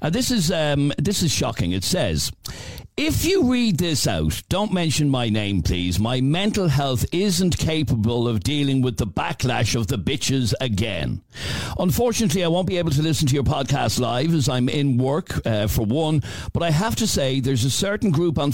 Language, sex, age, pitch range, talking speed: English, male, 60-79, 125-170 Hz, 190 wpm